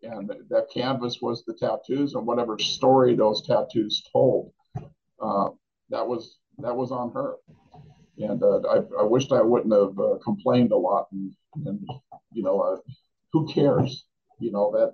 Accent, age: American, 50-69